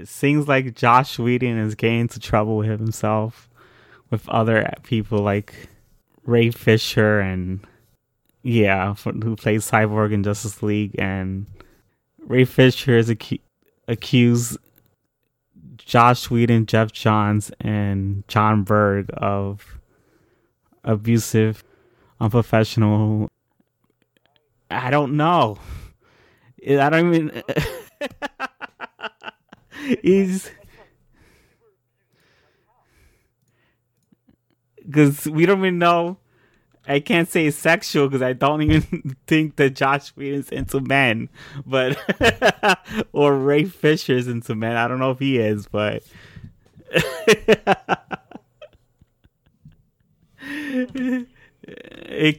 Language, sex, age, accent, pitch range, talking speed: English, male, 20-39, American, 110-145 Hz, 95 wpm